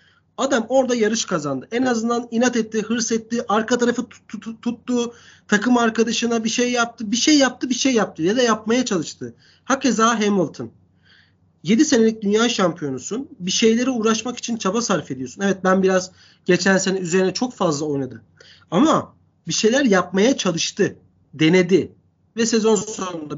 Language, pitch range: Turkish, 180-240 Hz